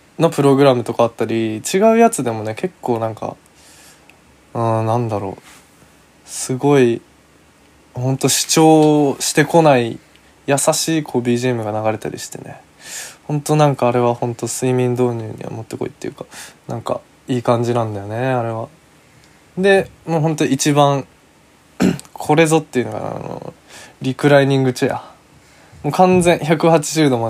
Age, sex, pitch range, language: 20-39, male, 120-160 Hz, Japanese